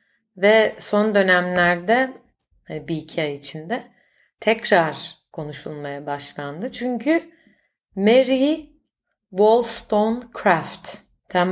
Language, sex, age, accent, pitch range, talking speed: Turkish, female, 30-49, native, 175-225 Hz, 70 wpm